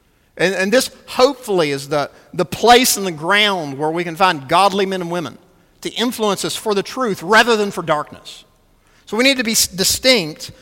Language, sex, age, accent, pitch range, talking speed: English, male, 50-69, American, 190-285 Hz, 200 wpm